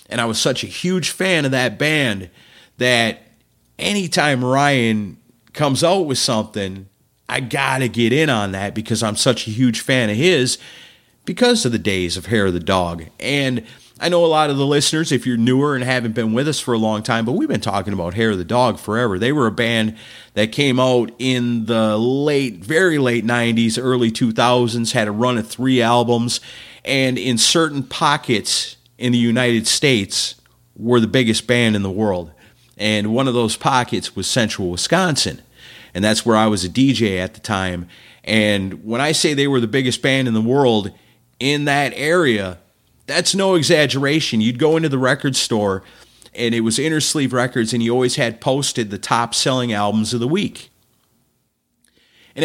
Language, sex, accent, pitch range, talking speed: English, male, American, 110-135 Hz, 190 wpm